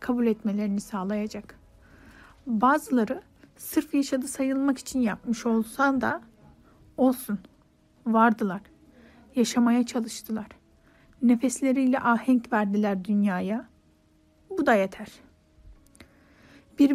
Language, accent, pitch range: Turkish, native, 225-265 Hz